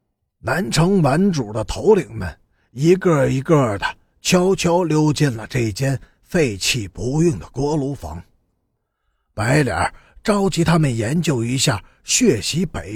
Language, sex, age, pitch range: Chinese, male, 50-69, 105-170 Hz